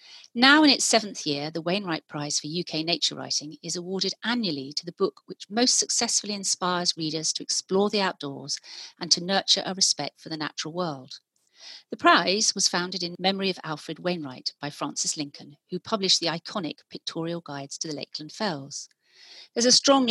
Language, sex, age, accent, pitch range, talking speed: English, female, 40-59, British, 150-190 Hz, 180 wpm